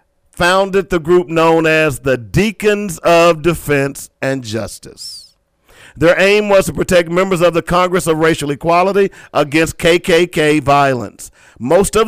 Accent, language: American, English